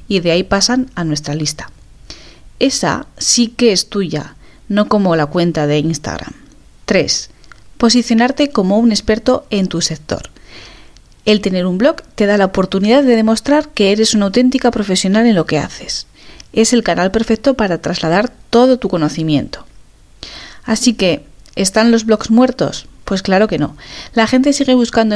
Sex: female